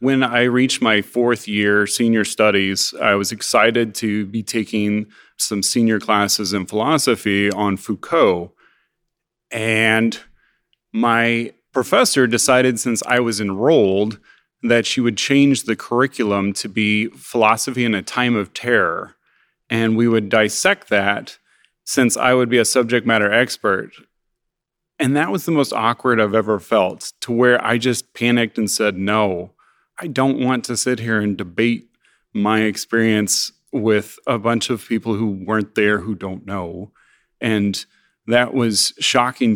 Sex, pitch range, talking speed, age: male, 105-120 Hz, 150 wpm, 30-49